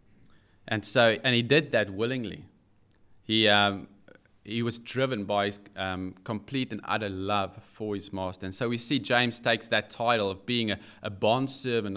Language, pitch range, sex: English, 95-115 Hz, male